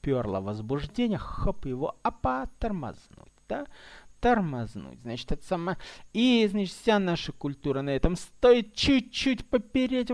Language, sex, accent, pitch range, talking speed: Russian, male, native, 130-215 Hz, 125 wpm